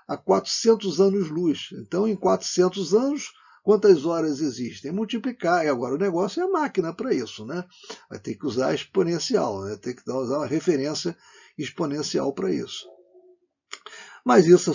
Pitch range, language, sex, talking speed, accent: 130-190 Hz, Portuguese, male, 150 wpm, Brazilian